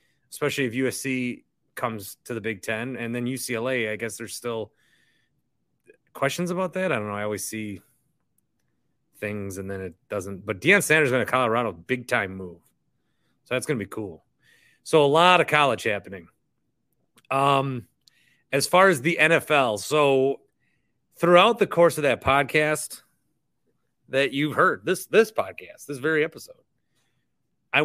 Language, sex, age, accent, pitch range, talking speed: English, male, 30-49, American, 115-170 Hz, 155 wpm